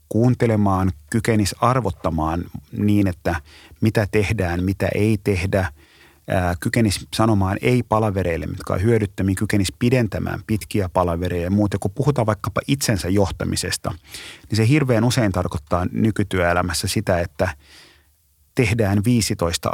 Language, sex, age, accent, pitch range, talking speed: Finnish, male, 30-49, native, 90-110 Hz, 115 wpm